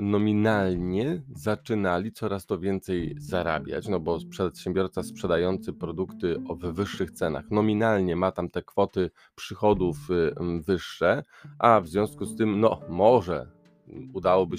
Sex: male